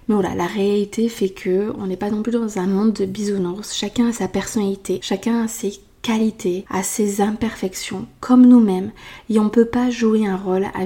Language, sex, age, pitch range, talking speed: French, female, 20-39, 195-230 Hz, 205 wpm